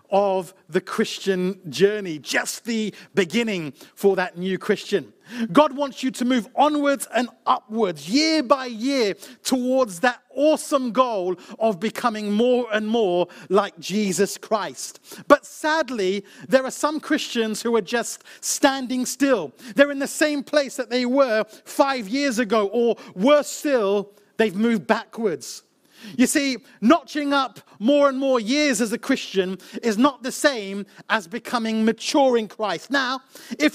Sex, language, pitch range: male, English, 210-275 Hz